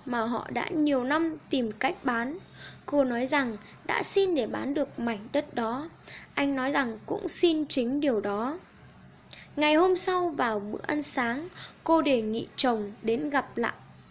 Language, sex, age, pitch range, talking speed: Vietnamese, female, 10-29, 240-300 Hz, 175 wpm